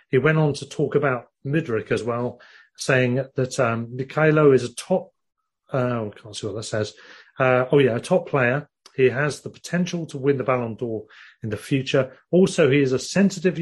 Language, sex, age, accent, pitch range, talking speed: English, male, 40-59, British, 125-155 Hz, 205 wpm